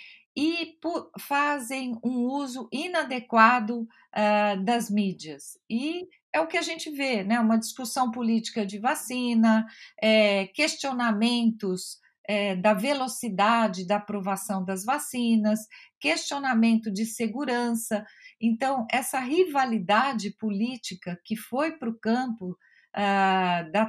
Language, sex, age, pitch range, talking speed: Portuguese, female, 40-59, 210-255 Hz, 100 wpm